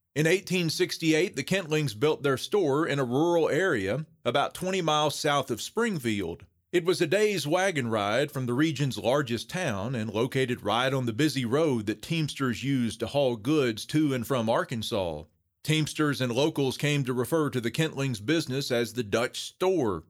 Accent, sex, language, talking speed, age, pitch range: American, male, English, 175 wpm, 40-59, 110-155 Hz